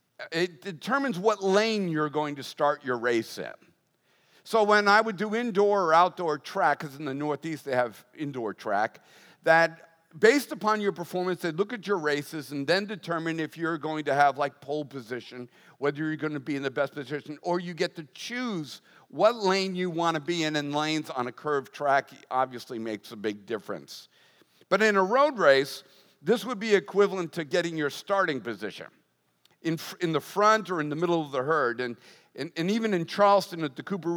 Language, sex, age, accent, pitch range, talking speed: English, male, 50-69, American, 150-205 Hz, 200 wpm